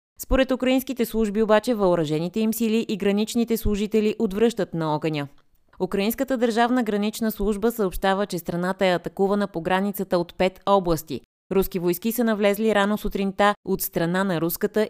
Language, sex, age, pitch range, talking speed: Bulgarian, female, 20-39, 175-215 Hz, 150 wpm